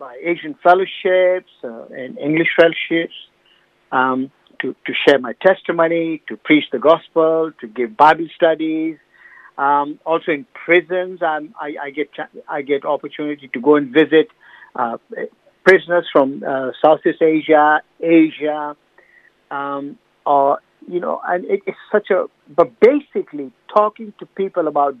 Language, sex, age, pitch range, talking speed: English, male, 50-69, 150-190 Hz, 130 wpm